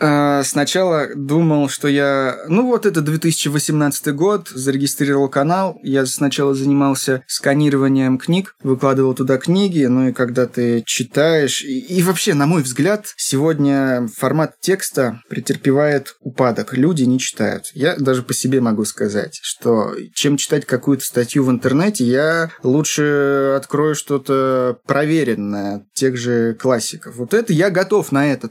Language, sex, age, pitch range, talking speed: Russian, male, 20-39, 130-155 Hz, 135 wpm